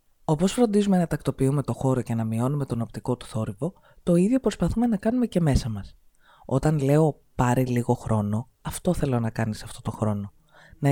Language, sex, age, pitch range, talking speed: Greek, female, 20-39, 125-185 Hz, 185 wpm